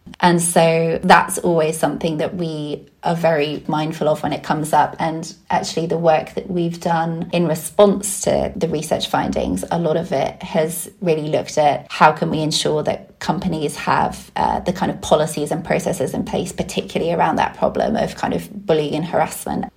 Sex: female